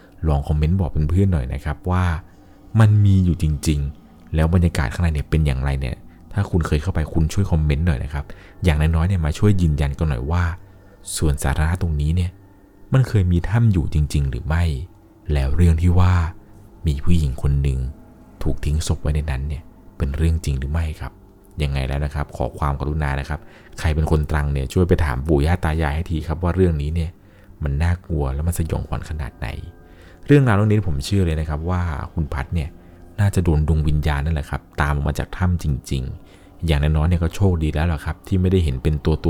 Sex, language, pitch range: male, Thai, 75-90 Hz